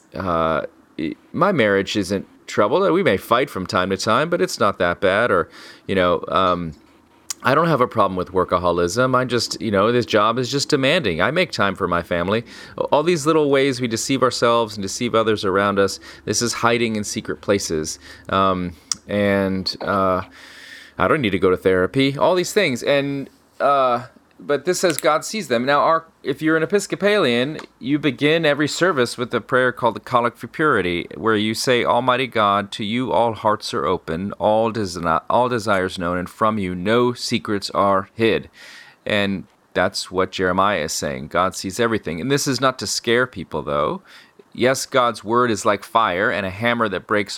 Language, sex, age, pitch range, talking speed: English, male, 30-49, 95-125 Hz, 190 wpm